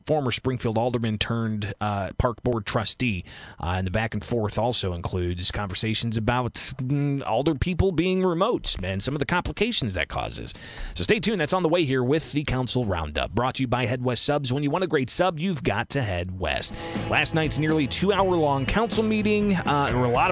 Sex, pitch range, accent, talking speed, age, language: male, 110-145 Hz, American, 215 wpm, 30-49, English